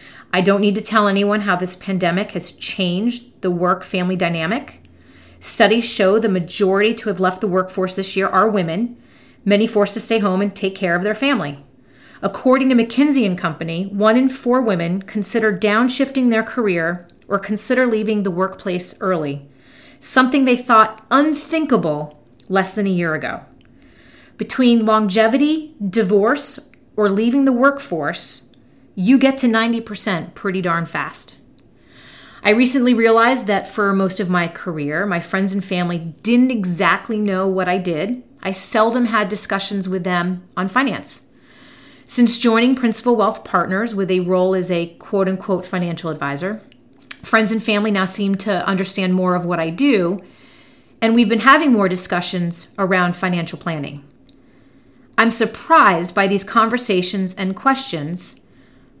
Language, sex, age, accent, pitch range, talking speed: English, female, 40-59, American, 180-225 Hz, 150 wpm